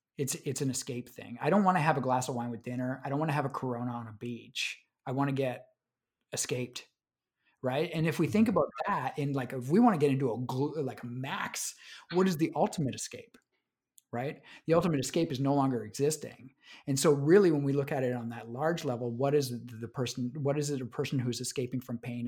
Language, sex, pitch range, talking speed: English, male, 125-150 Hz, 235 wpm